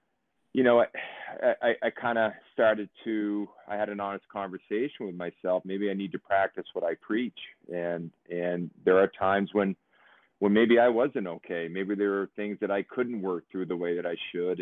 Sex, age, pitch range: male, 40-59, 90-100 Hz